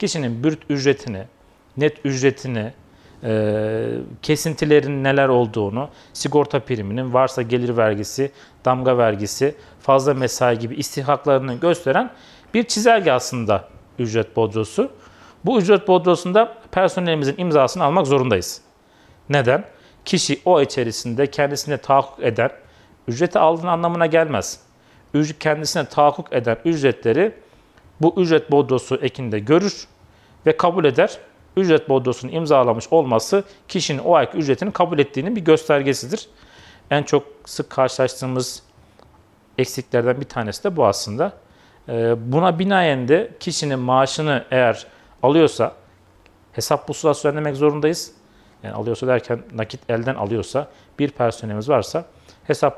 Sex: male